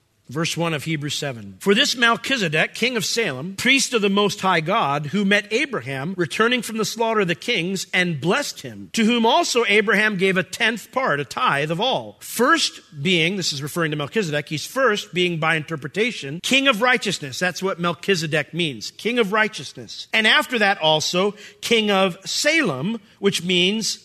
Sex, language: male, English